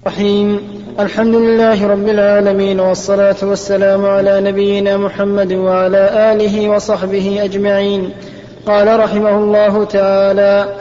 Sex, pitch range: male, 205-225 Hz